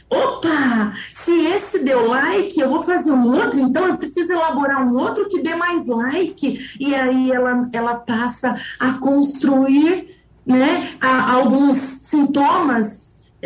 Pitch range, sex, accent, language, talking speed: 230-290 Hz, female, Brazilian, Portuguese, 135 wpm